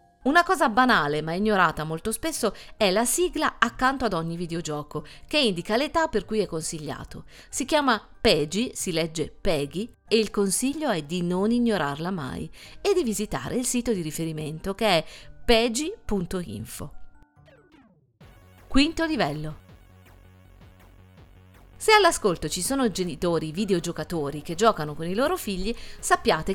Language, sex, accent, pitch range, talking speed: Italian, female, native, 155-235 Hz, 135 wpm